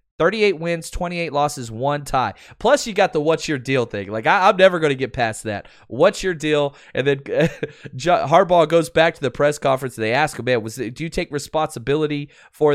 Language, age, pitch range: English, 20-39, 120-155 Hz